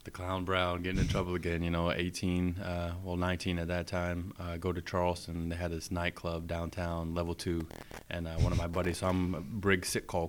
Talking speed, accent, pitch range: 225 wpm, American, 85-90 Hz